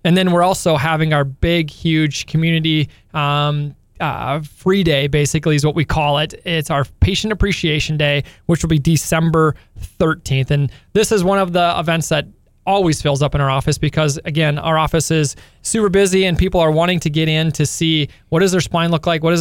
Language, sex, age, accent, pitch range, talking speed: English, male, 20-39, American, 150-170 Hz, 205 wpm